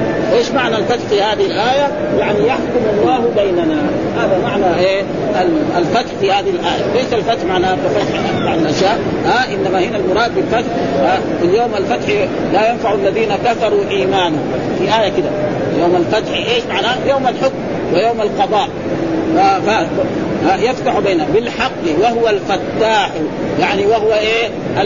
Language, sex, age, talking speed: Arabic, male, 40-59, 140 wpm